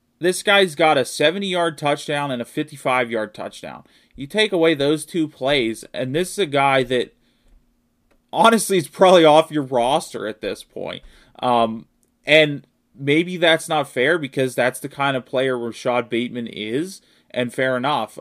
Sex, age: male, 30-49